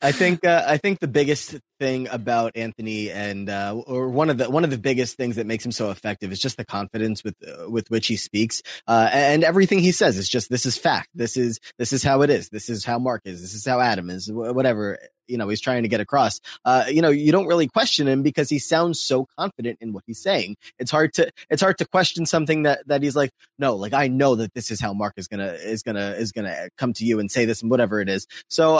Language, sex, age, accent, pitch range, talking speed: English, male, 20-39, American, 115-155 Hz, 270 wpm